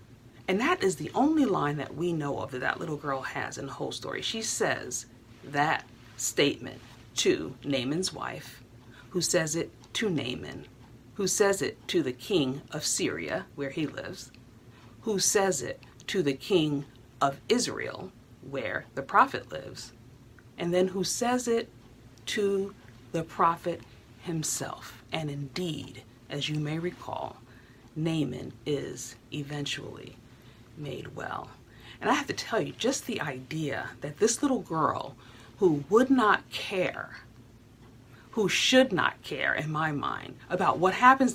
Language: English